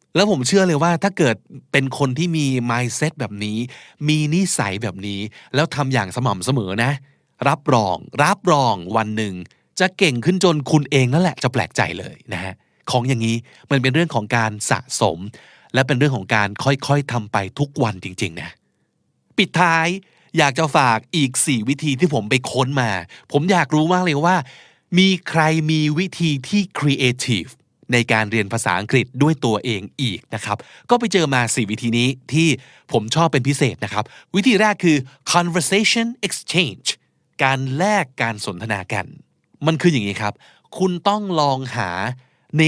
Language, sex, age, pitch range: Thai, male, 20-39, 115-160 Hz